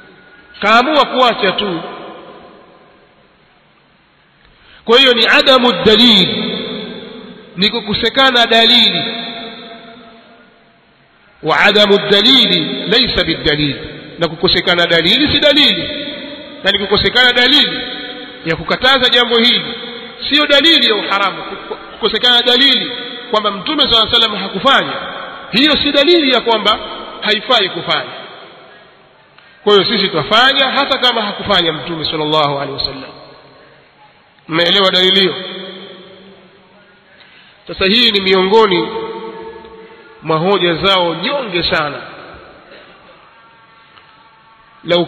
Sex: male